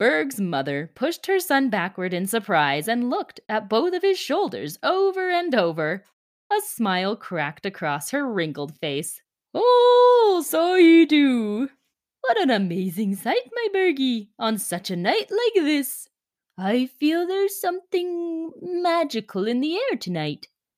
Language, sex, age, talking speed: English, female, 20-39, 145 wpm